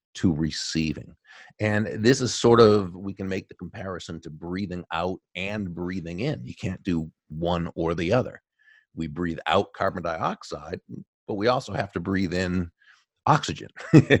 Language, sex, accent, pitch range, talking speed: English, male, American, 80-95 Hz, 160 wpm